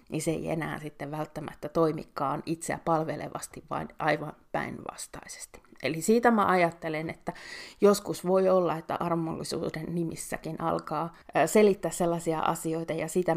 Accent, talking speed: native, 130 wpm